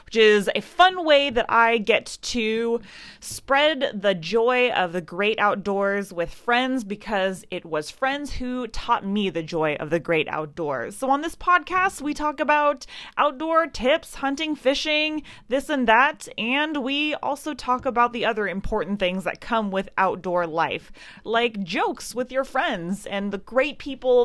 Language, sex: English, female